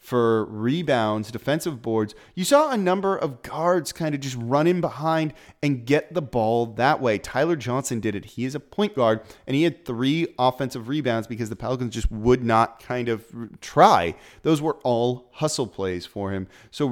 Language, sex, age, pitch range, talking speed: English, male, 30-49, 110-145 Hz, 190 wpm